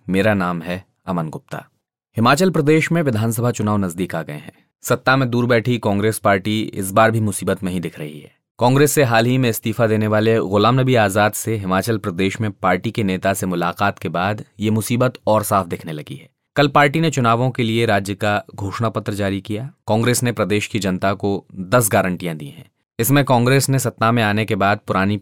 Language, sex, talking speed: Hindi, male, 210 wpm